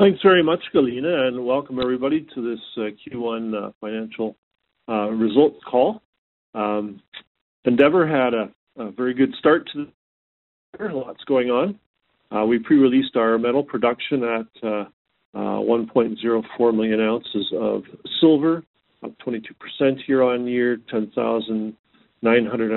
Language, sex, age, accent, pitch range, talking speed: English, male, 50-69, American, 110-130 Hz, 135 wpm